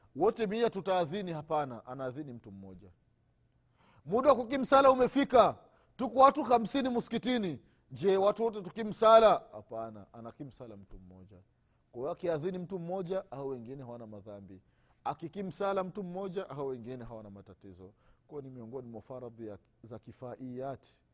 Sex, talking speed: male, 130 wpm